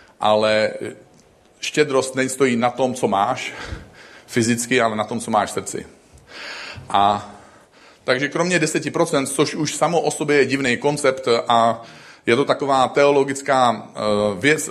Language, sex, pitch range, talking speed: Czech, male, 110-130 Hz, 140 wpm